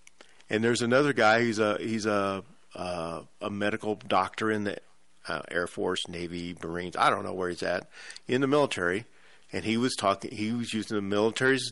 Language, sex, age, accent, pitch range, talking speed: English, male, 50-69, American, 95-125 Hz, 190 wpm